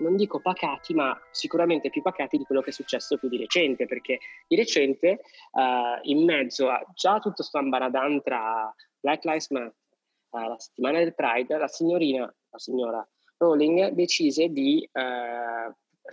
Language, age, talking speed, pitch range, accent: Italian, 20-39, 155 wpm, 125-175 Hz, native